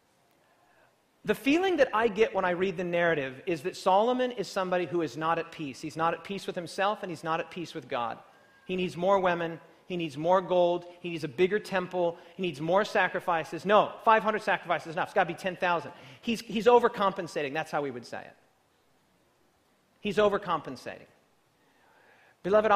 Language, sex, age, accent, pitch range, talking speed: English, male, 40-59, American, 175-230 Hz, 185 wpm